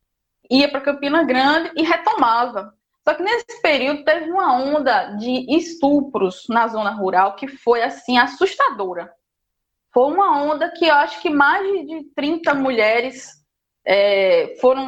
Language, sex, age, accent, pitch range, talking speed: Portuguese, female, 20-39, Brazilian, 245-315 Hz, 135 wpm